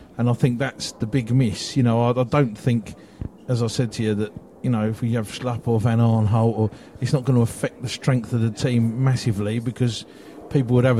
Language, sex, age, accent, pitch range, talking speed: English, male, 40-59, British, 110-125 Hz, 235 wpm